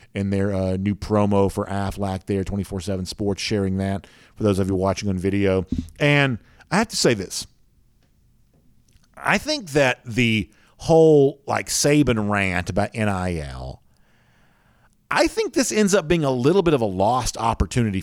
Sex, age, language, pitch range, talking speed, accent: male, 40-59, English, 100-140 Hz, 160 wpm, American